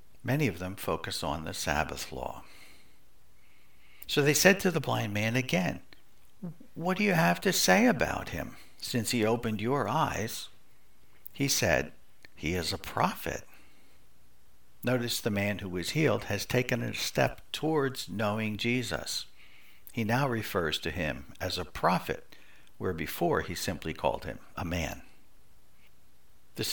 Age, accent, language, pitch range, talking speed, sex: 60-79, American, English, 95-135 Hz, 145 wpm, male